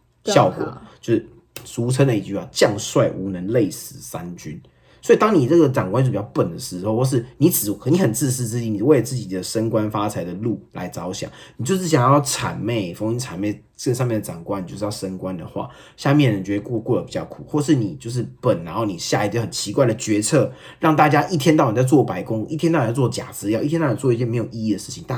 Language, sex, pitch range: Chinese, male, 110-145 Hz